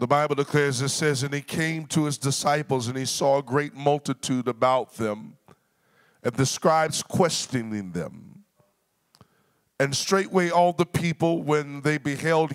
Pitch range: 140-165 Hz